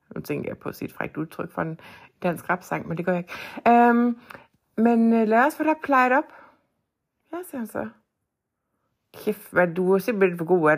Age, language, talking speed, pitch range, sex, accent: 60-79, Danish, 190 wpm, 155-215 Hz, female, native